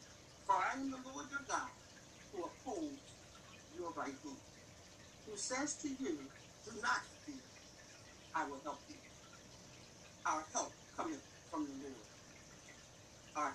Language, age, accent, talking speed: English, 60-79, American, 135 wpm